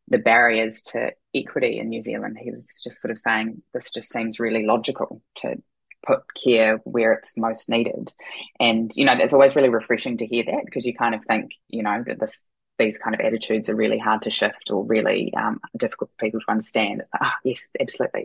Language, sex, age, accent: English, female, 20-39, Australian